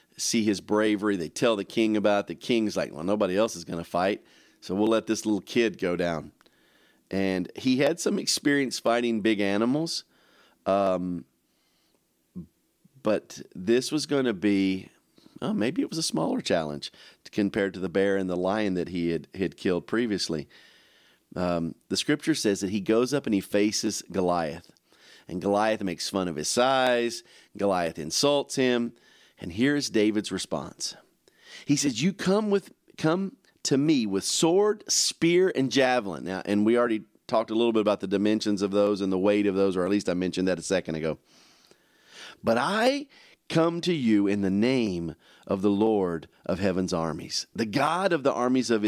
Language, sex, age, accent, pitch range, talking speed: English, male, 40-59, American, 95-140 Hz, 185 wpm